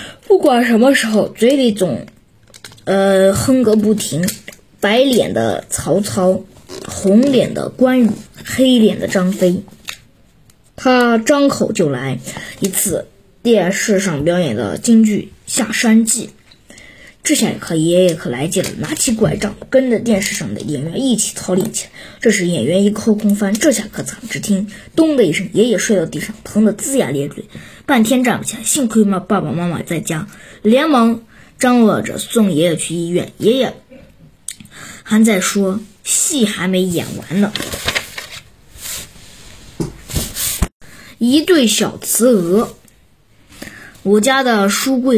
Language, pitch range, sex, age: Chinese, 185-230 Hz, female, 20-39